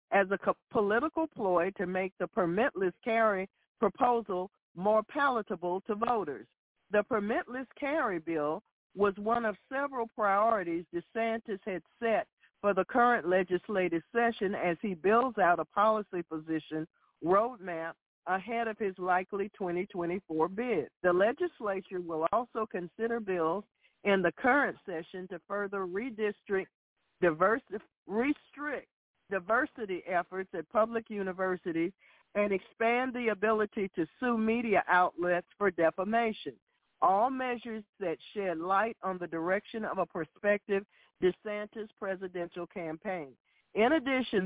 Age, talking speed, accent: 50-69, 125 wpm, American